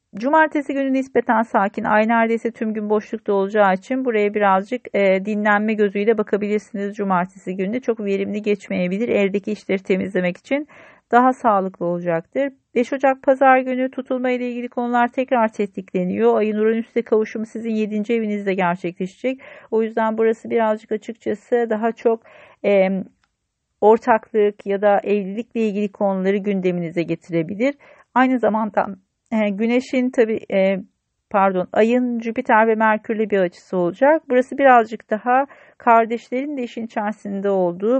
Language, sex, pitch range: Turkish, female, 200-240 Hz